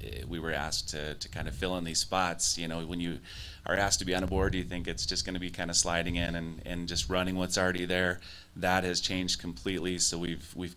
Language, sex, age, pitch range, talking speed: English, male, 30-49, 80-95 Hz, 265 wpm